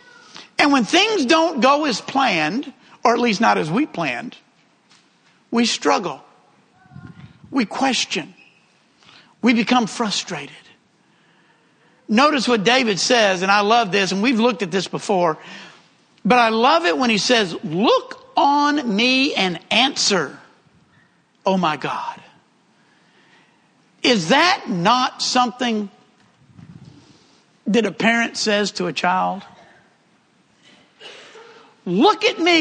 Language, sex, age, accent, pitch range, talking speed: English, male, 60-79, American, 205-300 Hz, 120 wpm